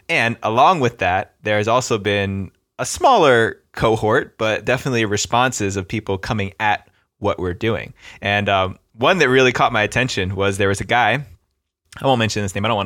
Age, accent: 20-39, American